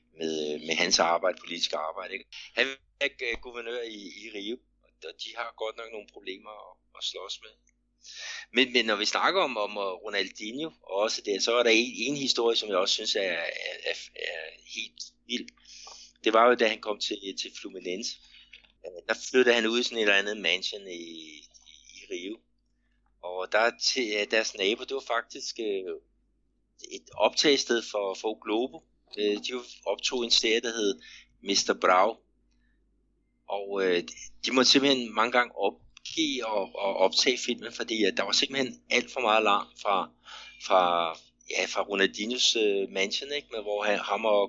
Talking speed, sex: 165 wpm, male